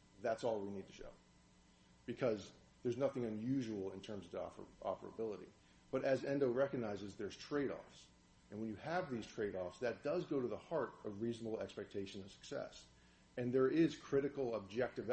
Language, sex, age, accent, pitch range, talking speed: English, male, 40-59, American, 95-130 Hz, 165 wpm